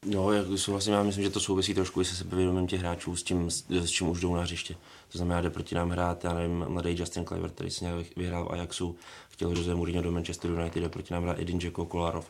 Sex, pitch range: male, 85-95 Hz